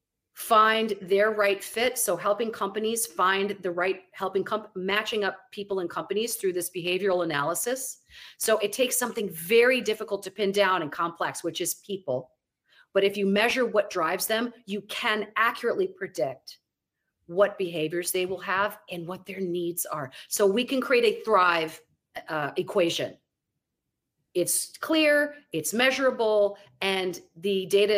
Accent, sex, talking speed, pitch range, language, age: American, female, 150 wpm, 185-245 Hz, English, 40-59